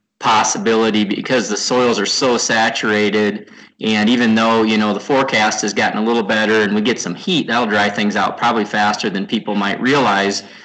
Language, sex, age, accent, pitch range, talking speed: English, male, 30-49, American, 105-120 Hz, 190 wpm